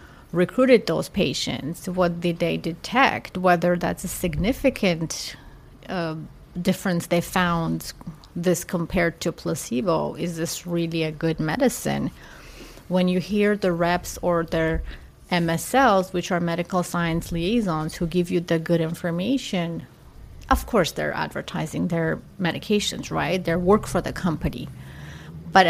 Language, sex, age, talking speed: English, female, 30-49, 135 wpm